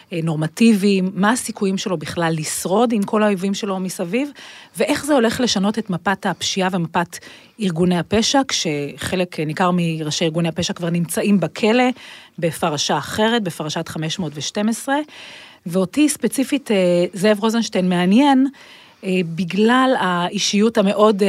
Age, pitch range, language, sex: 30-49, 180-225 Hz, Hebrew, female